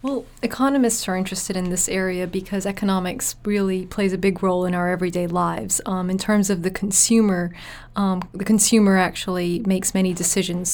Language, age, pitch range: English, 30-49, 180-200 Hz